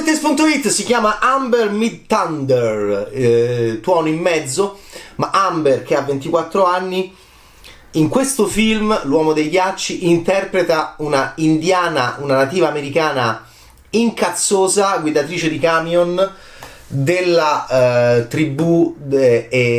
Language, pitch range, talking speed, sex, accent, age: Italian, 135-210 Hz, 105 wpm, male, native, 30-49